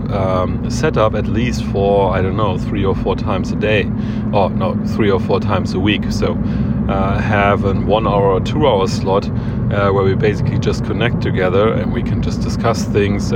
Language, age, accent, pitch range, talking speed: English, 30-49, German, 100-115 Hz, 210 wpm